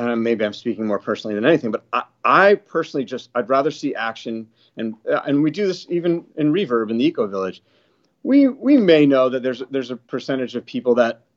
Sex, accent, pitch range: male, American, 110-135 Hz